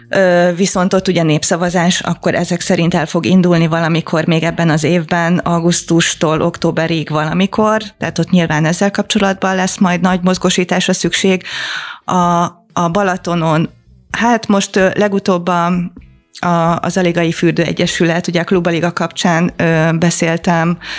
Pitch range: 160-185 Hz